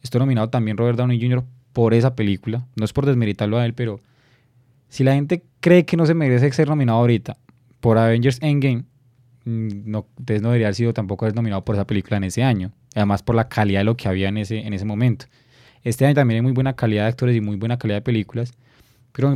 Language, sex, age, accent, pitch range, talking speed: Spanish, male, 20-39, Colombian, 110-130 Hz, 225 wpm